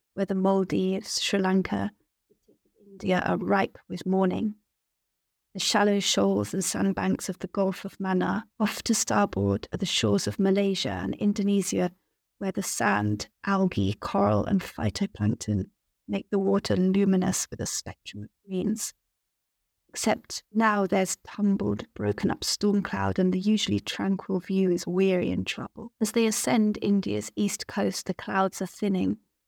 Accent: British